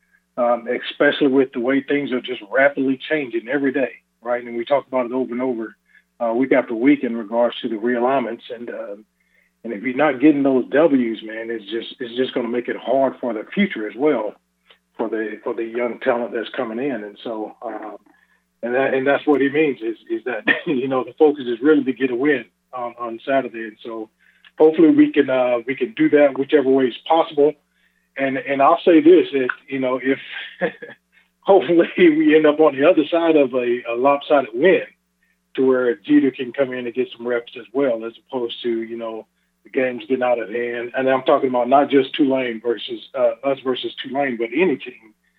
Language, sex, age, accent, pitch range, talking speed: English, male, 40-59, American, 120-145 Hz, 215 wpm